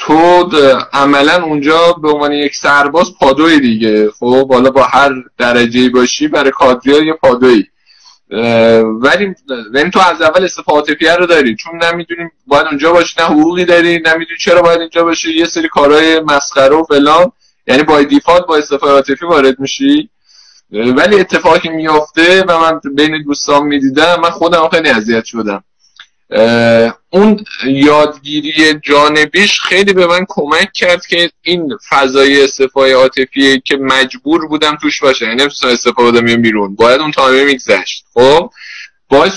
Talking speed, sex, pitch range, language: 140 wpm, male, 135-170 Hz, Persian